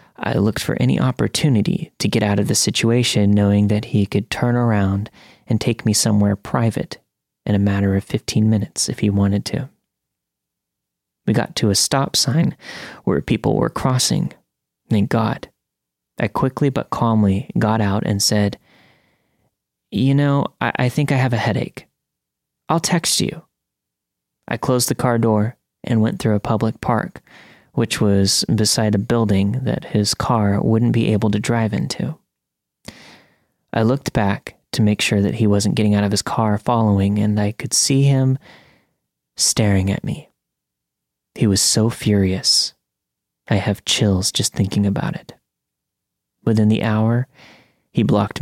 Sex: male